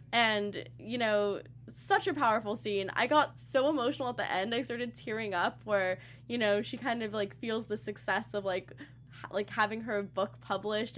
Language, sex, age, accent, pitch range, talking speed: English, female, 10-29, American, 185-215 Hz, 195 wpm